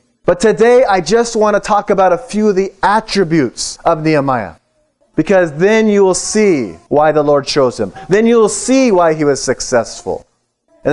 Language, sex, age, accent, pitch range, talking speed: English, male, 30-49, American, 155-210 Hz, 185 wpm